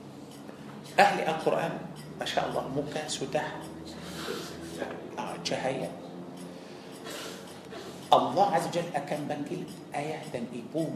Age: 50-69